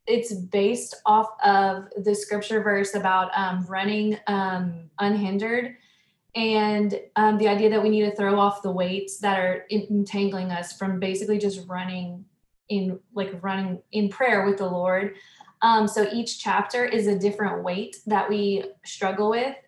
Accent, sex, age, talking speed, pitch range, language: American, female, 20-39, 160 wpm, 190-220 Hz, English